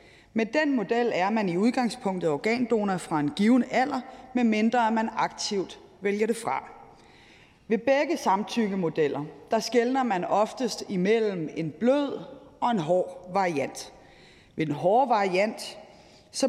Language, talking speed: Danish, 135 wpm